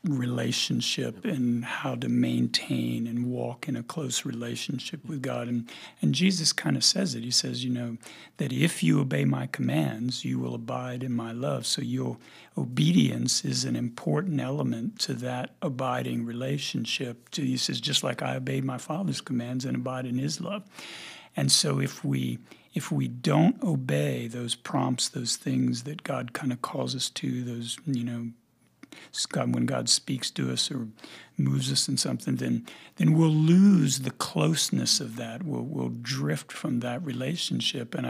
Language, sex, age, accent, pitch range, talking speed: English, male, 60-79, American, 110-140 Hz, 170 wpm